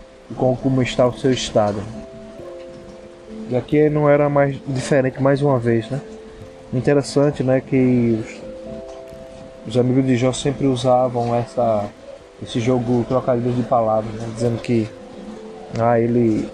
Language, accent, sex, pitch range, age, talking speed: Portuguese, Brazilian, male, 110-130 Hz, 20-39, 135 wpm